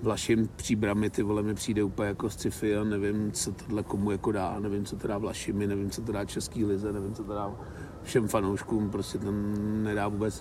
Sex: male